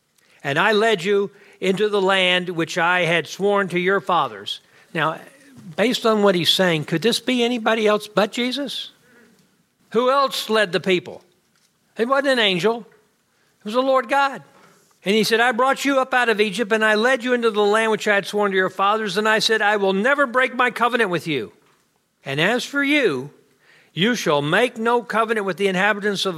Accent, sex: American, male